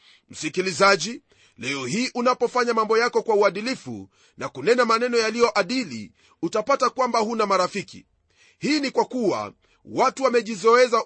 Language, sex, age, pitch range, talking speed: Swahili, male, 40-59, 215-245 Hz, 125 wpm